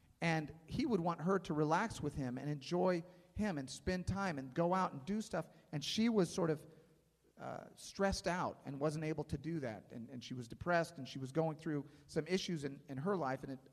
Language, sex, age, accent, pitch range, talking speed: English, male, 40-59, American, 135-170 Hz, 230 wpm